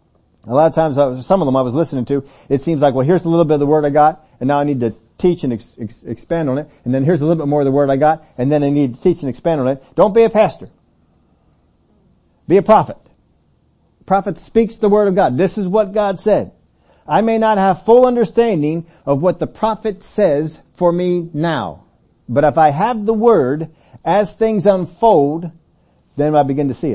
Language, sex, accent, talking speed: English, male, American, 225 wpm